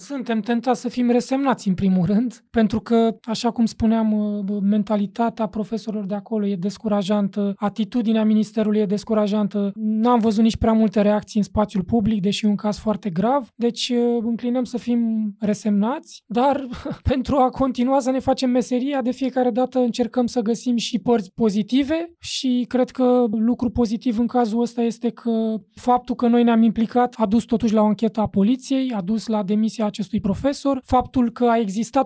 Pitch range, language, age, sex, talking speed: 215-245 Hz, Romanian, 20-39, male, 170 wpm